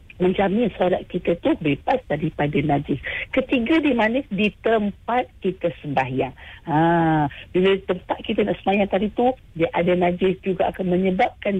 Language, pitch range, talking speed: English, 170-235 Hz, 140 wpm